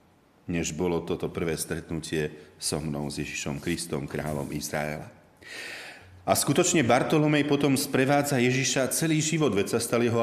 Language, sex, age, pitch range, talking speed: Slovak, male, 40-59, 80-125 Hz, 140 wpm